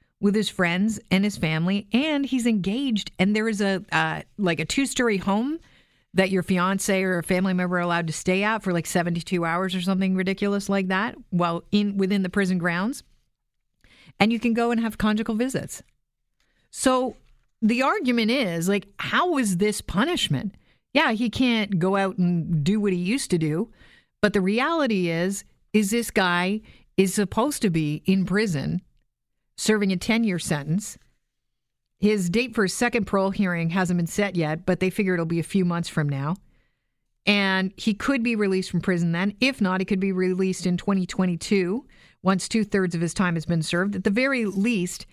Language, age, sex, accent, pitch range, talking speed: English, 50-69, female, American, 180-215 Hz, 185 wpm